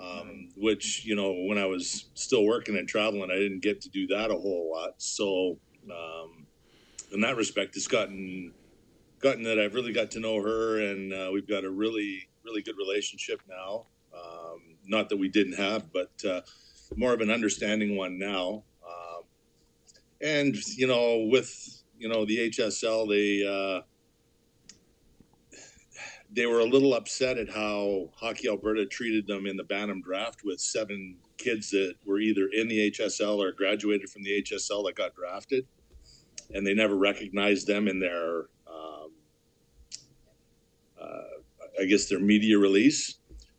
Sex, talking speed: male, 160 wpm